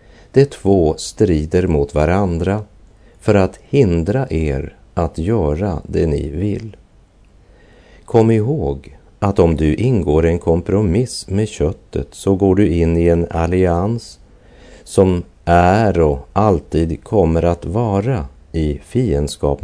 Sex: male